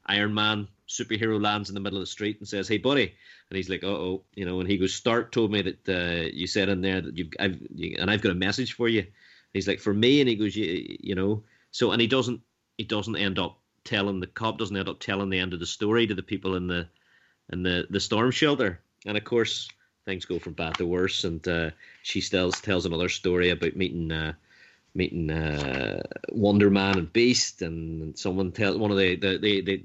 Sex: male